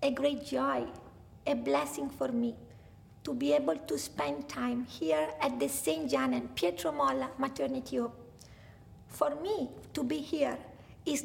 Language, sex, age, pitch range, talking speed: English, female, 50-69, 255-335 Hz, 150 wpm